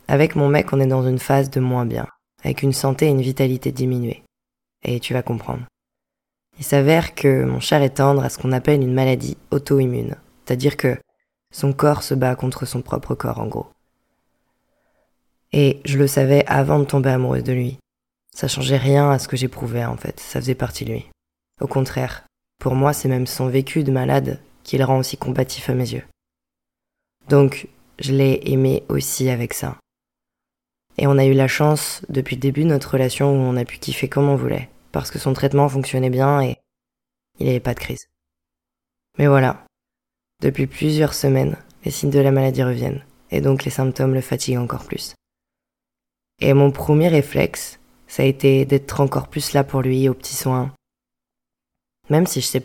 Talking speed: 195 wpm